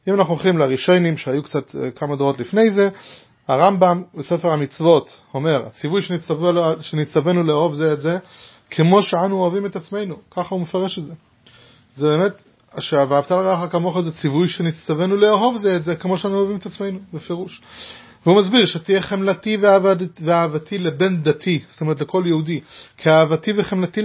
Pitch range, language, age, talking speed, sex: 150-200 Hz, English, 30-49, 155 wpm, male